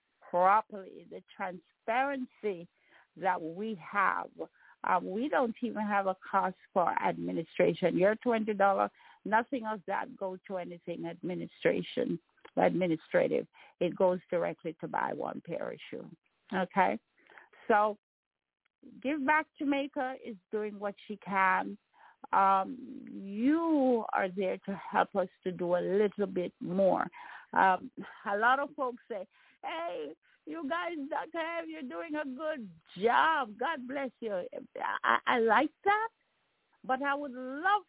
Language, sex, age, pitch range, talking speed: English, female, 50-69, 205-325 Hz, 130 wpm